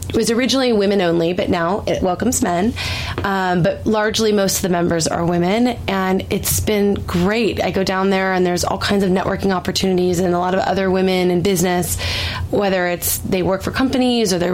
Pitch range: 170-200 Hz